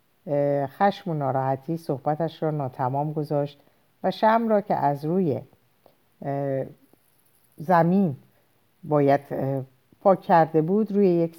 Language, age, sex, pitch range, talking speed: Persian, 50-69, female, 130-185 Hz, 105 wpm